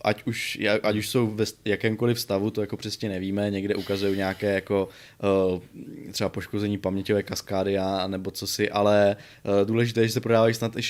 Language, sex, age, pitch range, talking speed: Czech, male, 20-39, 100-115 Hz, 160 wpm